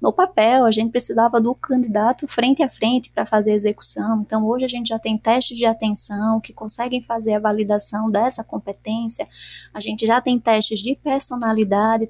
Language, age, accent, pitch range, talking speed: Portuguese, 20-39, Brazilian, 220-265 Hz, 185 wpm